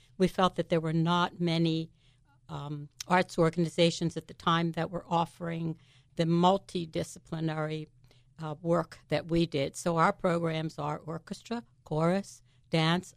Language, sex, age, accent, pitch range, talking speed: English, female, 60-79, American, 150-170 Hz, 135 wpm